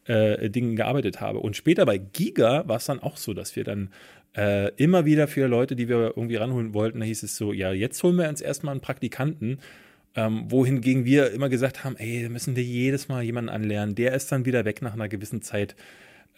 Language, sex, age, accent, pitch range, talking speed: German, male, 30-49, German, 110-135 Hz, 225 wpm